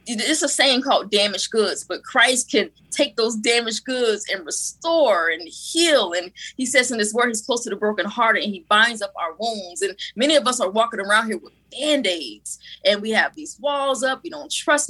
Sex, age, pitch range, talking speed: female, 20-39, 200-260 Hz, 215 wpm